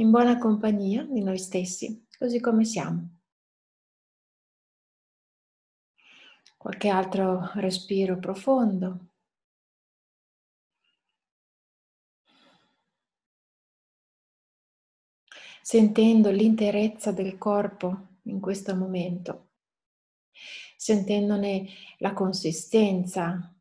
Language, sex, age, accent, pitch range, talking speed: Italian, female, 30-49, native, 180-220 Hz, 60 wpm